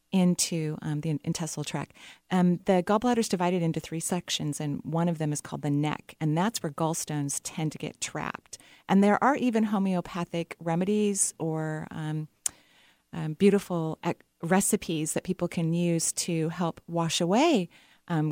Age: 30-49